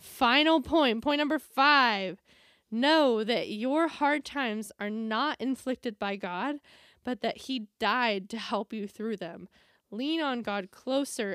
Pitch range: 195-255 Hz